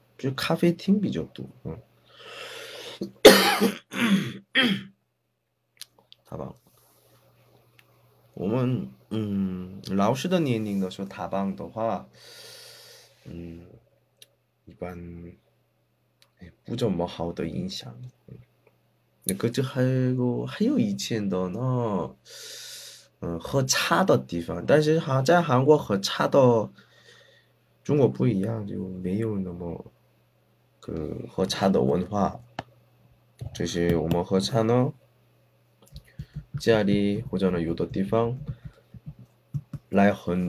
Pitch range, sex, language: 85-125 Hz, male, Chinese